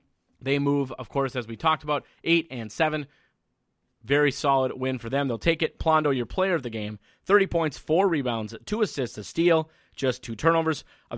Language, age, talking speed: English, 30-49, 200 wpm